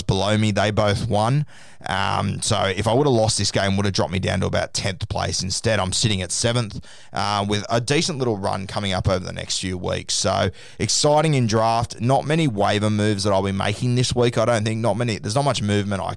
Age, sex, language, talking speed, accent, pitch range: 20-39, male, English, 240 wpm, Australian, 95-115 Hz